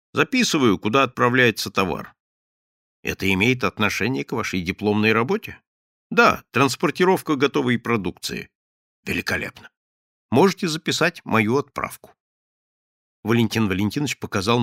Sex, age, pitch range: male, 50-69, 95-160 Hz